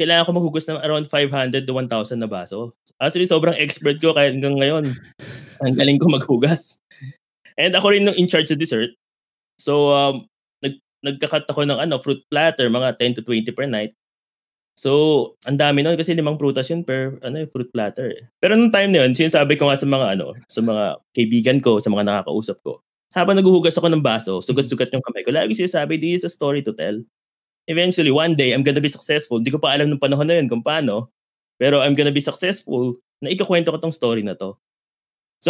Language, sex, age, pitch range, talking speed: Filipino, male, 20-39, 120-160 Hz, 210 wpm